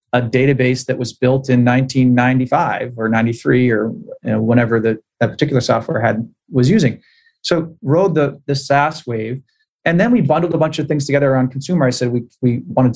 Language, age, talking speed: English, 30-49, 195 wpm